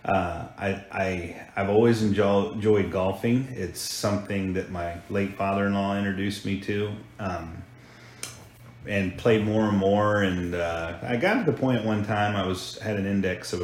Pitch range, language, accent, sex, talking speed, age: 95-110 Hz, English, American, male, 165 wpm, 30-49